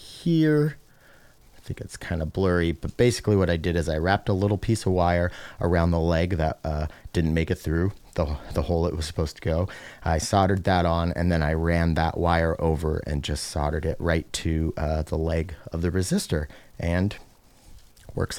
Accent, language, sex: American, English, male